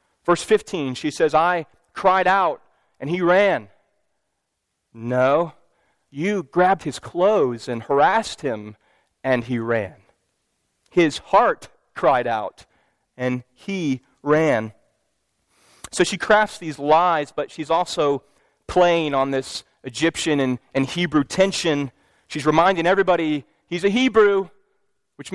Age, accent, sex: 30-49, American, male